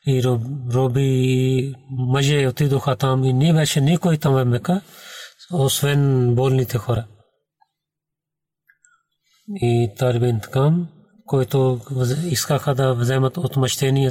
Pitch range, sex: 130-155 Hz, male